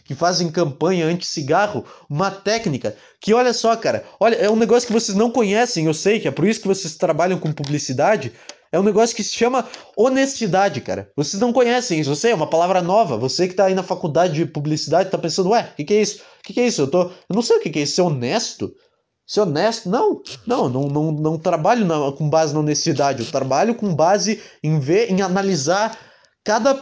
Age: 20-39